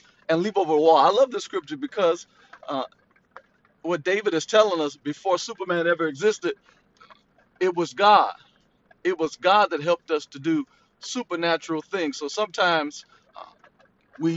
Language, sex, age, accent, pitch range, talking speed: English, male, 40-59, American, 145-185 Hz, 155 wpm